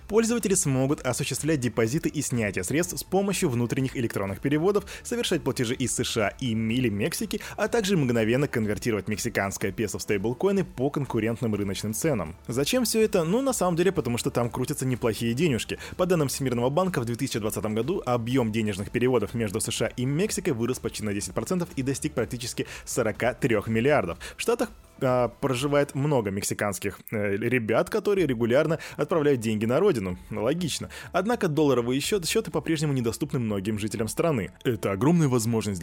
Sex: male